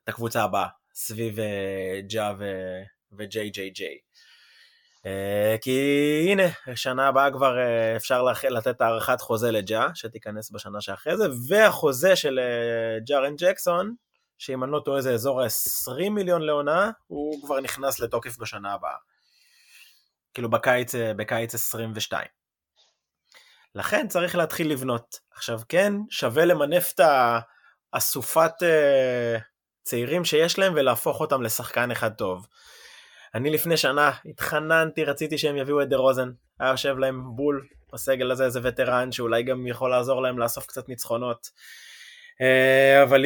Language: Hebrew